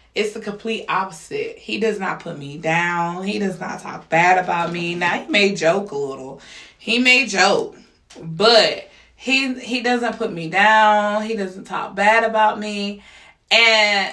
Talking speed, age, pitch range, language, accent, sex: 170 wpm, 20-39, 190-230 Hz, English, American, female